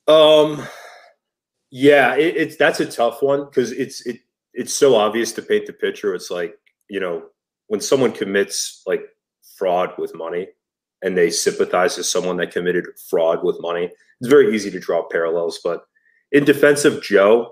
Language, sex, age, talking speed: English, male, 30-49, 170 wpm